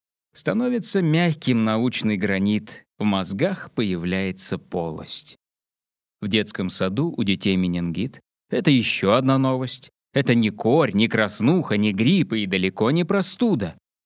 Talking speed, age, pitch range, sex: 125 wpm, 20-39, 100-155 Hz, male